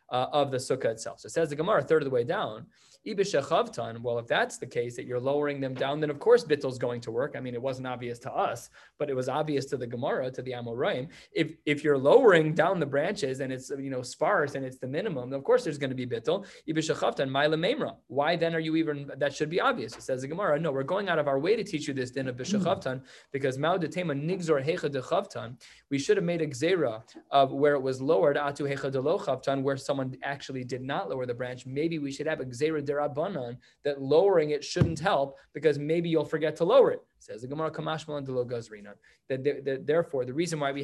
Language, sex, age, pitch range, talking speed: English, male, 20-39, 130-155 Hz, 215 wpm